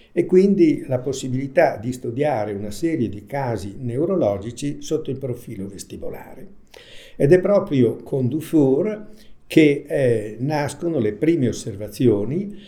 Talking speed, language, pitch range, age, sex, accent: 120 wpm, Italian, 115-145 Hz, 60-79, male, native